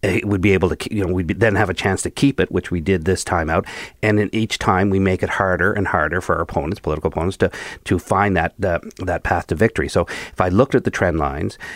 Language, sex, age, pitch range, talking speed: English, male, 50-69, 90-110 Hz, 275 wpm